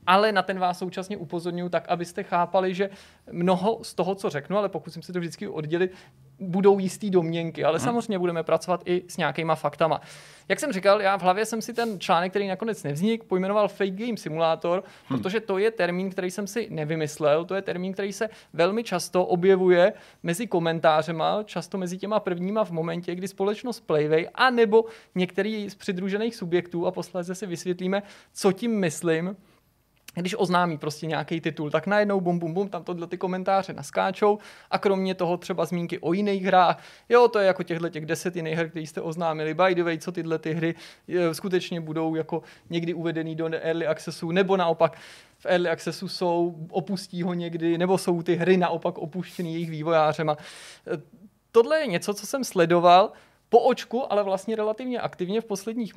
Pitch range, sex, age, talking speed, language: 165-200 Hz, male, 20-39, 180 wpm, Czech